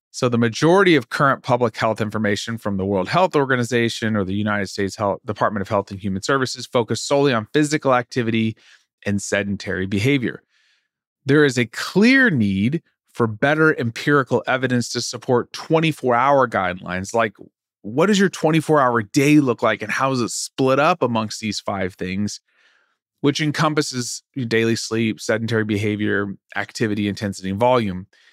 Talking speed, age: 155 wpm, 30-49